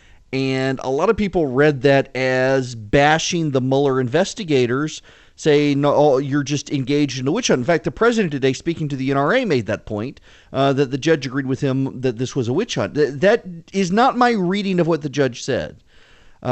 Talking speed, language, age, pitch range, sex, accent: 210 wpm, English, 40-59, 125-155 Hz, male, American